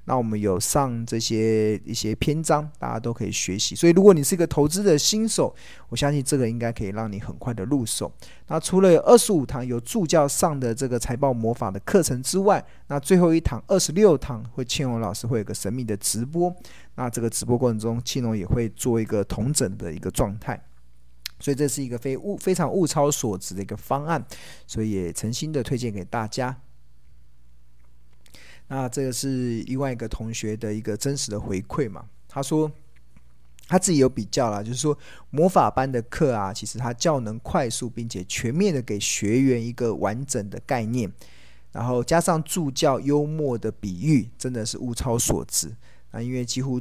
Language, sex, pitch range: Chinese, male, 110-145 Hz